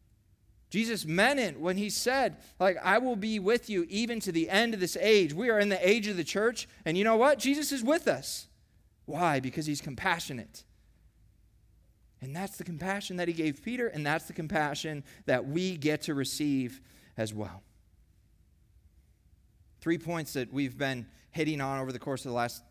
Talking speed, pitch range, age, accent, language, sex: 190 wpm, 105-160 Hz, 30-49, American, English, male